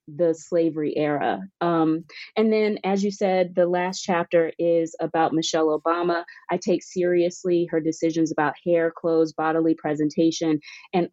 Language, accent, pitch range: English, American, 155-175 Hz